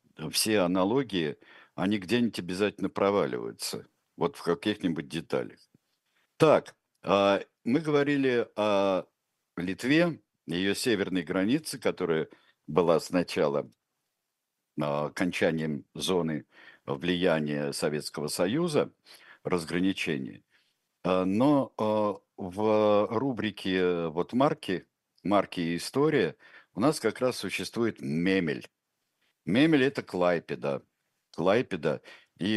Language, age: Russian, 60-79